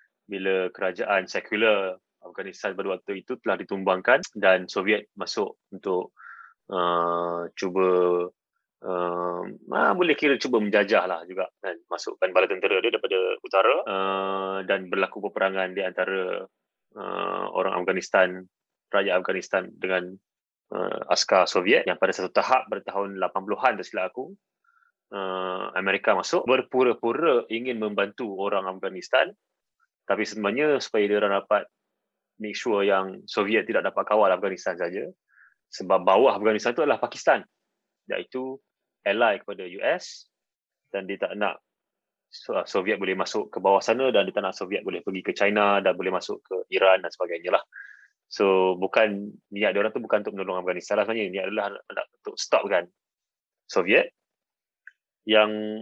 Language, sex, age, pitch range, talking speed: Malay, male, 20-39, 95-130 Hz, 140 wpm